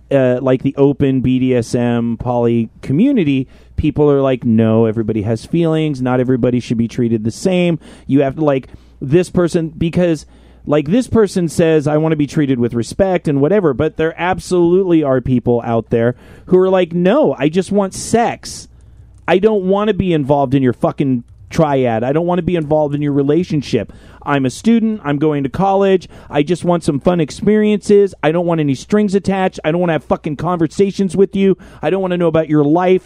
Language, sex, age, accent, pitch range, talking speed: English, male, 30-49, American, 130-180 Hz, 200 wpm